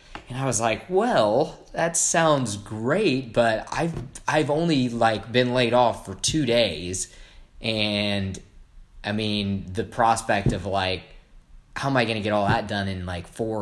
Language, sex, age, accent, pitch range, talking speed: English, male, 20-39, American, 100-120 Hz, 170 wpm